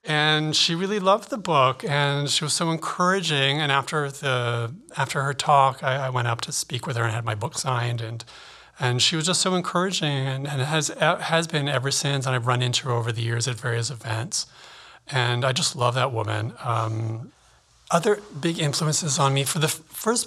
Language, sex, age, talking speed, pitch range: English, male, 40-59, 205 wpm, 120-155 Hz